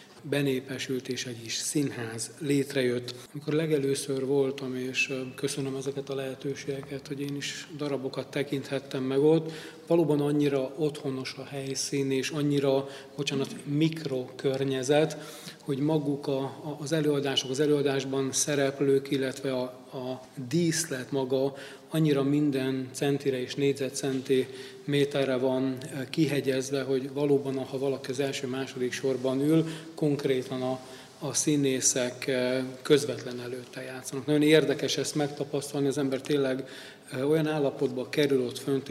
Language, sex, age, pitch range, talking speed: Hungarian, male, 40-59, 130-145 Hz, 120 wpm